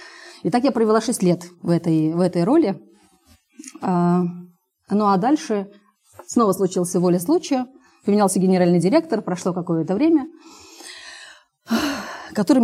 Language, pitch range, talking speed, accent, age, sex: Russian, 180-230 Hz, 115 wpm, native, 30-49, female